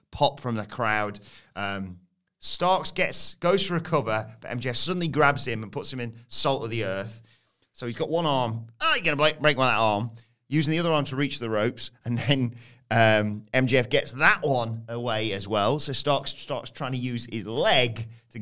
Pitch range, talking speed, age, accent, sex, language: 105-140 Hz, 200 wpm, 30-49, British, male, English